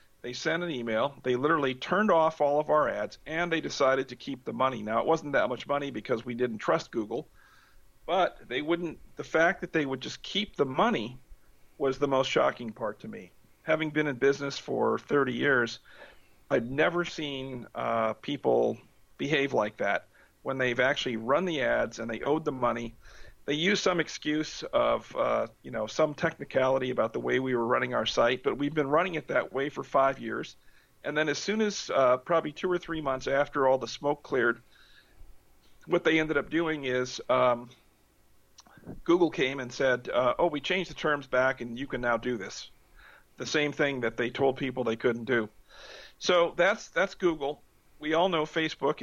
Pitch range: 125-155 Hz